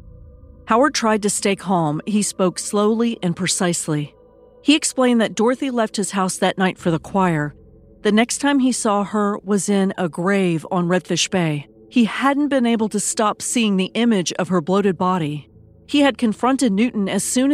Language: English